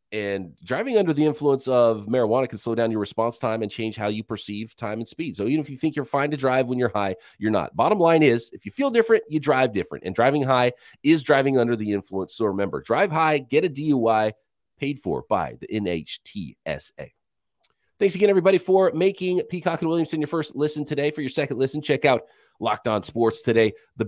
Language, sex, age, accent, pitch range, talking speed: English, male, 30-49, American, 110-150 Hz, 220 wpm